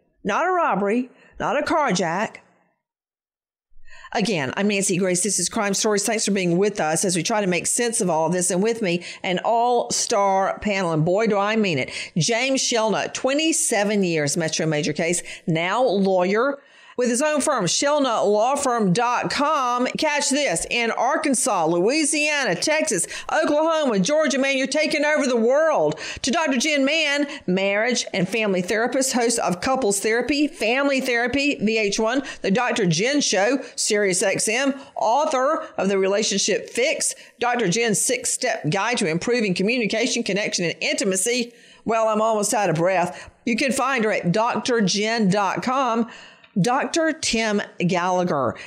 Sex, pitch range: female, 190-250 Hz